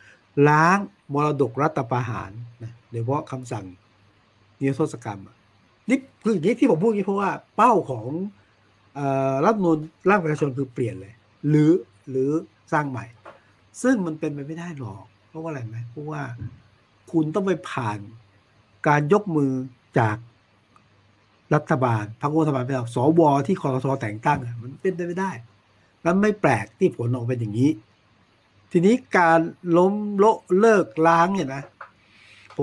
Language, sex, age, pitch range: Thai, male, 60-79, 115-165 Hz